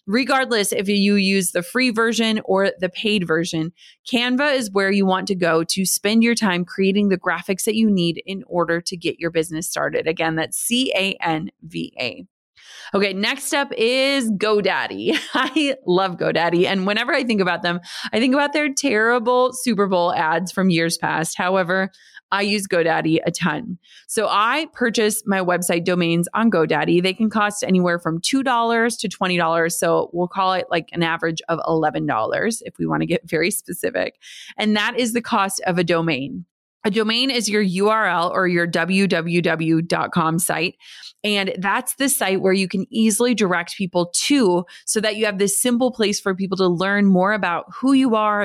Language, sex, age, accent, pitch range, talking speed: English, female, 30-49, American, 175-225 Hz, 180 wpm